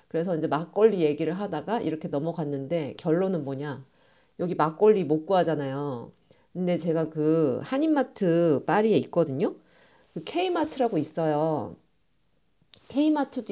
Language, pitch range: Korean, 155-220 Hz